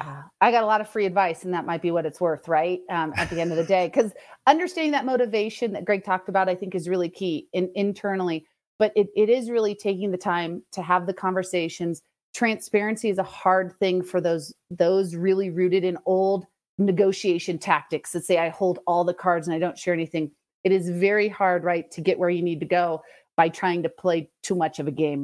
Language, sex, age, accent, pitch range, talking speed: English, female, 30-49, American, 170-200 Hz, 230 wpm